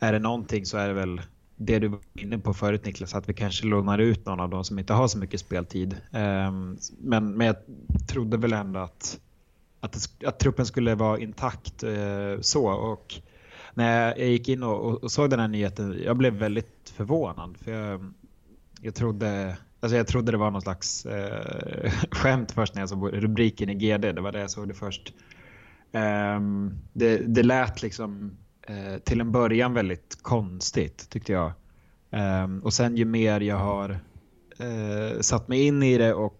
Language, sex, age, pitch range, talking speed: Swedish, male, 20-39, 95-115 Hz, 175 wpm